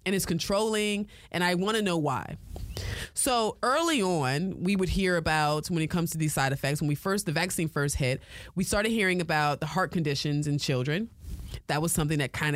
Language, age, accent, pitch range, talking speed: English, 20-39, American, 145-190 Hz, 210 wpm